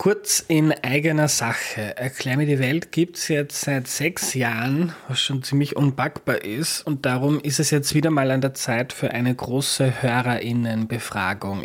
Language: German